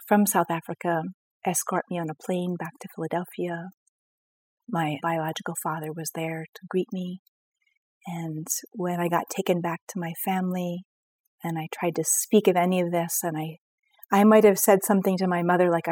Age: 40-59